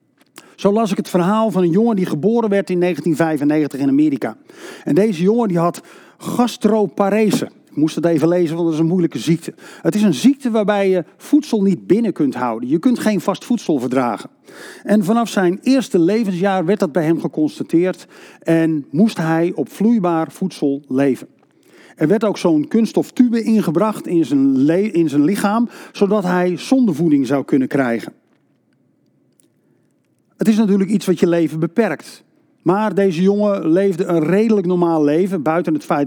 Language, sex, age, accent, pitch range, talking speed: Dutch, male, 50-69, Dutch, 160-215 Hz, 170 wpm